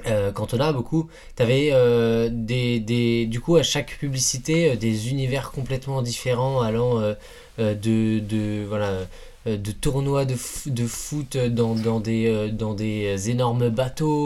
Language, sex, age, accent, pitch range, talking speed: French, male, 20-39, French, 110-135 Hz, 175 wpm